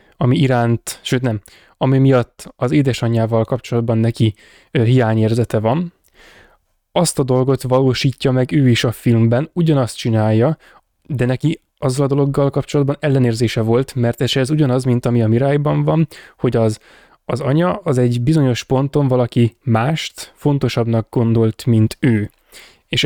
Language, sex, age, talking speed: Hungarian, male, 10-29, 145 wpm